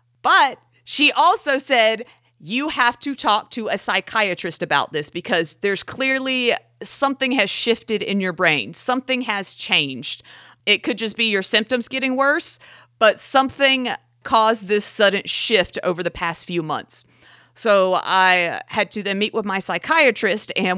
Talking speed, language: 155 wpm, English